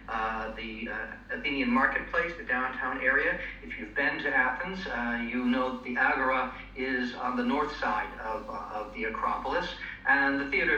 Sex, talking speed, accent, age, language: male, 175 wpm, American, 50-69, English